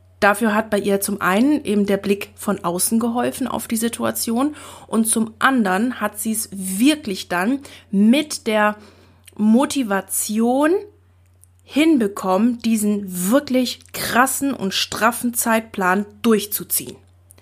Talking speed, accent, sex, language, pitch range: 115 wpm, German, female, German, 190-240 Hz